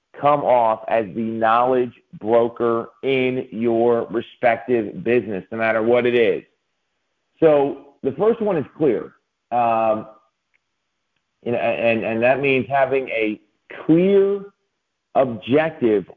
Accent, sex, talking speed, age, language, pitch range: American, male, 115 wpm, 40-59, English, 110-140 Hz